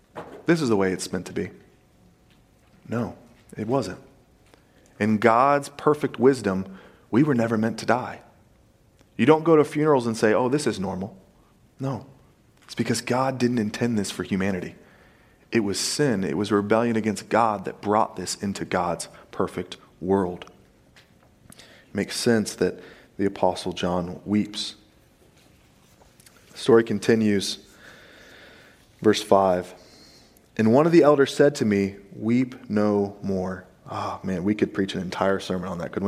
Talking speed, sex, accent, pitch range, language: 150 wpm, male, American, 95-120 Hz, English